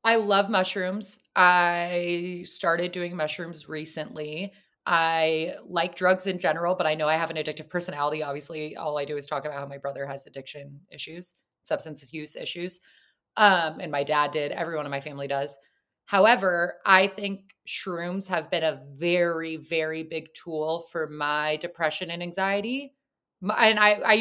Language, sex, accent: English, female, American